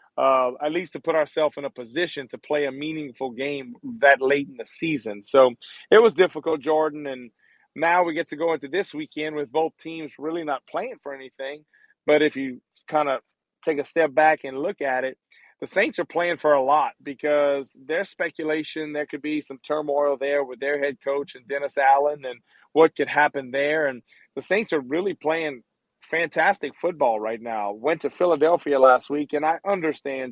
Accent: American